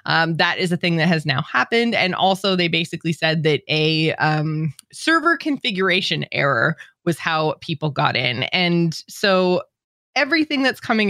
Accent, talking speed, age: American, 160 wpm, 20-39